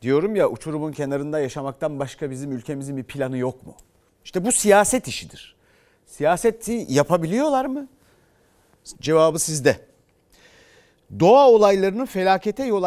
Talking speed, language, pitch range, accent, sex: 115 wpm, Turkish, 130-200 Hz, native, male